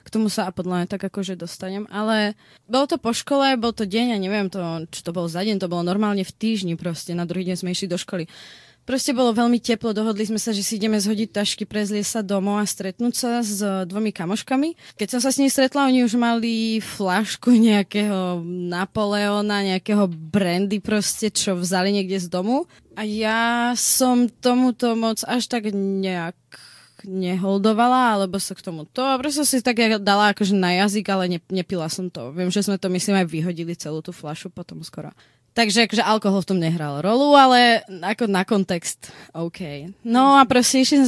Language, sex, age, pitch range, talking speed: Czech, female, 20-39, 185-235 Hz, 200 wpm